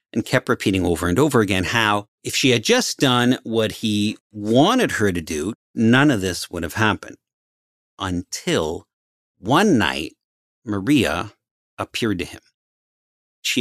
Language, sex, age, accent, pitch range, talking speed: English, male, 50-69, American, 95-120 Hz, 145 wpm